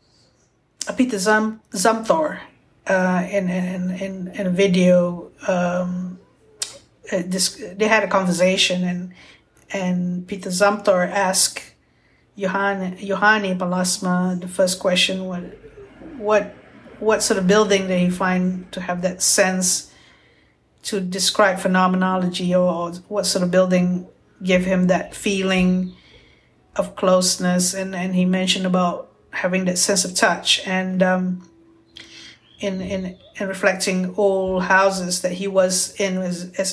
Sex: female